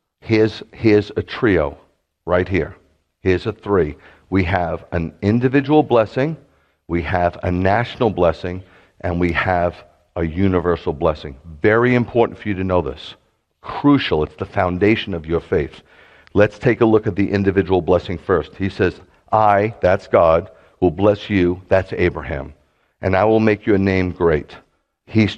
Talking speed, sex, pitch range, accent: 155 wpm, male, 90-110 Hz, American